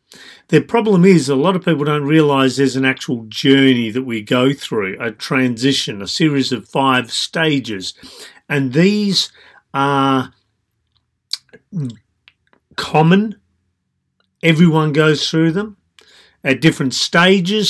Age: 40-59